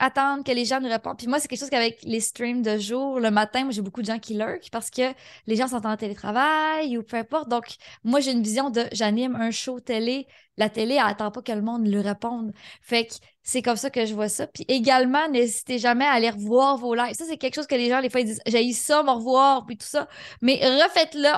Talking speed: 265 wpm